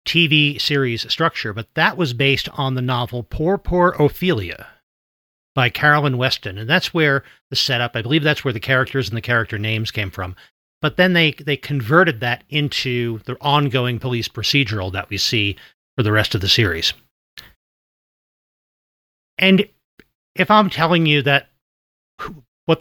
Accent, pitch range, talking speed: American, 115-150 Hz, 160 wpm